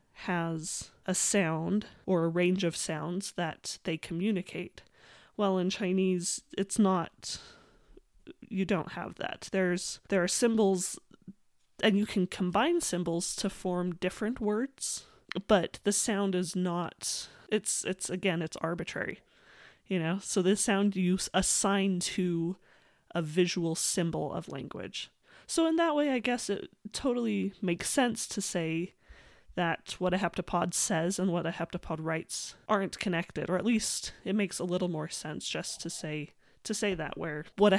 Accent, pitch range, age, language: American, 170-200 Hz, 30-49, English